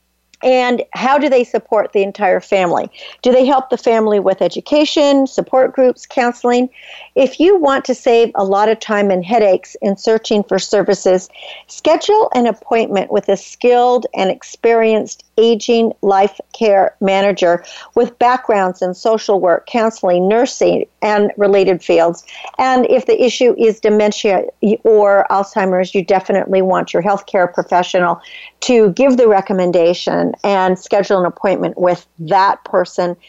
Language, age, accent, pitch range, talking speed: English, 50-69, American, 195-245 Hz, 145 wpm